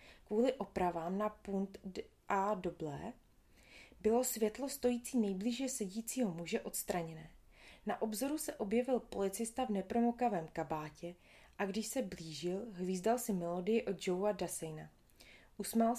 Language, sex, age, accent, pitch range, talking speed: Czech, female, 30-49, native, 180-230 Hz, 125 wpm